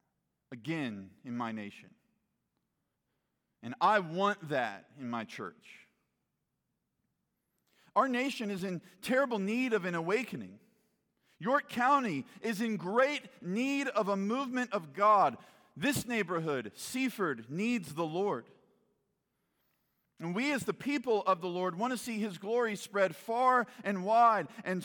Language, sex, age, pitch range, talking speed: English, male, 50-69, 180-245 Hz, 135 wpm